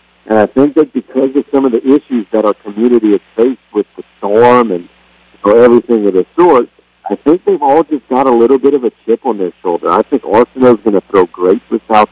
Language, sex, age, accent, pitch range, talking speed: English, male, 50-69, American, 100-120 Hz, 245 wpm